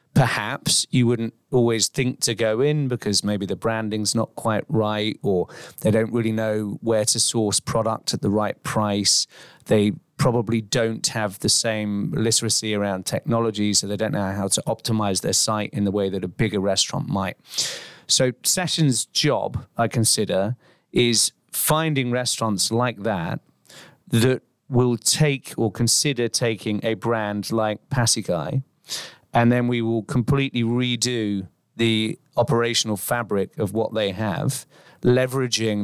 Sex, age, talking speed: male, 30-49, 145 wpm